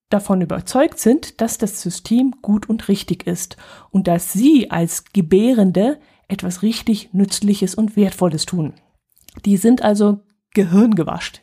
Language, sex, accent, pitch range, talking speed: German, female, German, 190-230 Hz, 130 wpm